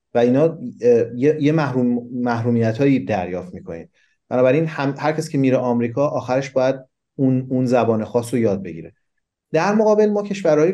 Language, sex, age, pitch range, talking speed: Persian, male, 30-49, 115-140 Hz, 140 wpm